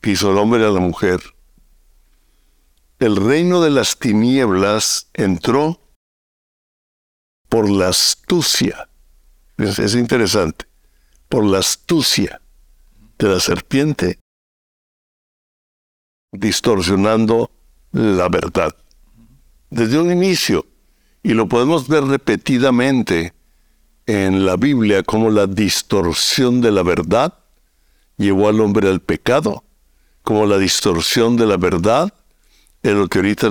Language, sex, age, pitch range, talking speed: Spanish, male, 60-79, 75-115 Hz, 105 wpm